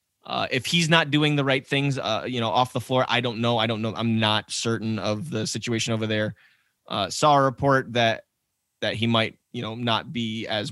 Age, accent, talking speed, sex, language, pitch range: 20-39, American, 230 wpm, male, English, 110-135 Hz